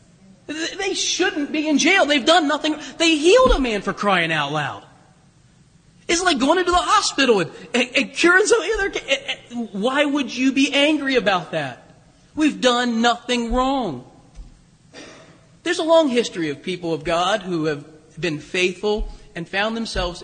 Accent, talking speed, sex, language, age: American, 160 wpm, male, English, 40-59